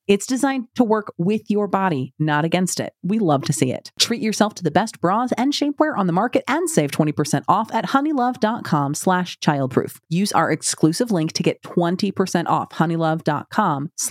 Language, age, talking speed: English, 30-49, 180 wpm